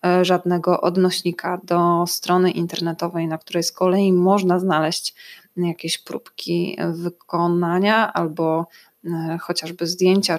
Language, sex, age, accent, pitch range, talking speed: Polish, female, 20-39, native, 170-190 Hz, 100 wpm